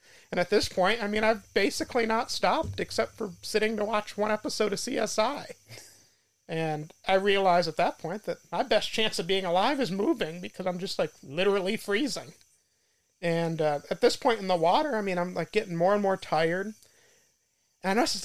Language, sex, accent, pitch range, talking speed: English, male, American, 155-200 Hz, 200 wpm